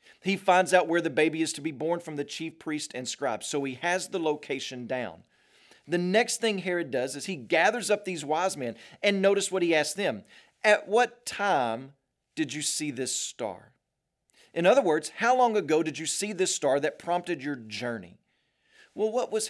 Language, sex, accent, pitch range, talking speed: English, male, American, 135-190 Hz, 205 wpm